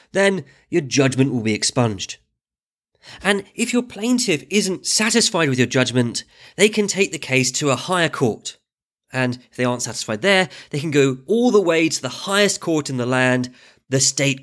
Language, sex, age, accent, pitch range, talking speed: English, male, 30-49, British, 125-195 Hz, 185 wpm